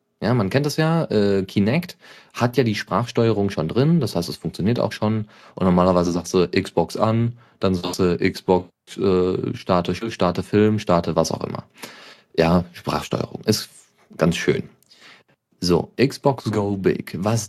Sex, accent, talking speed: male, German, 160 wpm